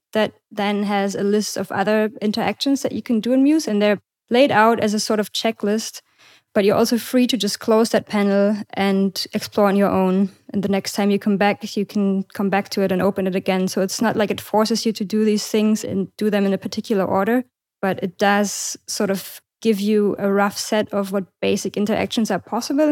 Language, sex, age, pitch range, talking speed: English, female, 20-39, 195-215 Hz, 230 wpm